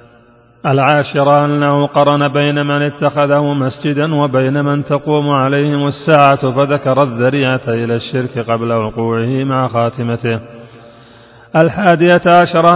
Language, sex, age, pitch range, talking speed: Arabic, male, 40-59, 115-145 Hz, 105 wpm